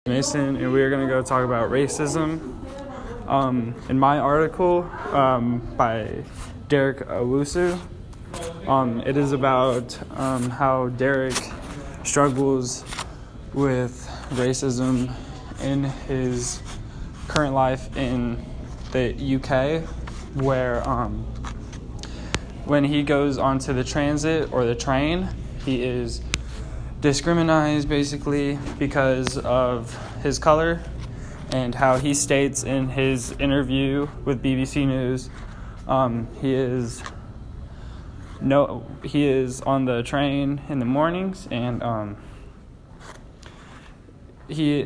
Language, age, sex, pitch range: English, 10-29, male, 120-140 Hz